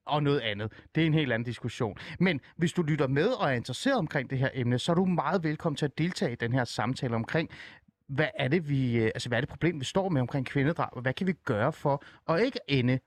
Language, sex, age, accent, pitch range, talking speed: Danish, male, 30-49, native, 120-160 Hz, 260 wpm